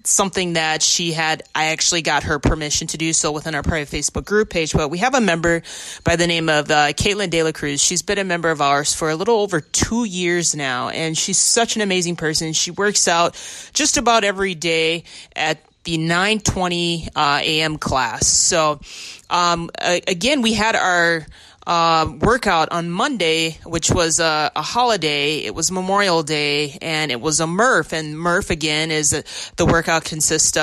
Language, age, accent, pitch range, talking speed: English, 30-49, American, 155-185 Hz, 190 wpm